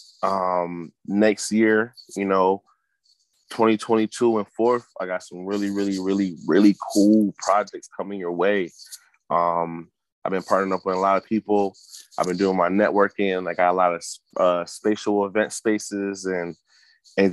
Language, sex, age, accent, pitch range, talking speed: English, male, 20-39, American, 90-105 Hz, 160 wpm